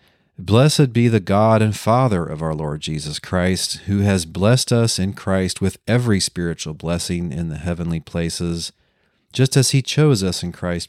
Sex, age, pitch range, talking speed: male, 40-59, 85-110 Hz, 175 wpm